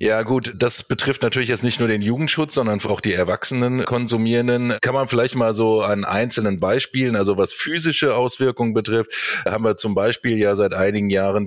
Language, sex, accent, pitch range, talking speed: English, male, German, 100-125 Hz, 185 wpm